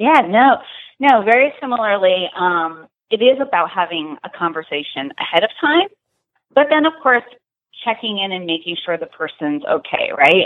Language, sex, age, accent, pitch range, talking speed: English, female, 30-49, American, 165-240 Hz, 160 wpm